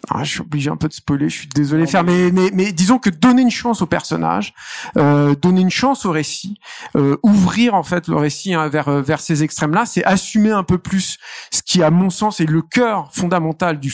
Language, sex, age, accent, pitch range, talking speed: French, male, 50-69, French, 150-190 Hz, 235 wpm